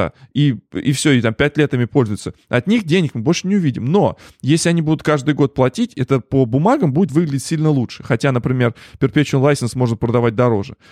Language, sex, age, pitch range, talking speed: Russian, male, 20-39, 115-145 Hz, 205 wpm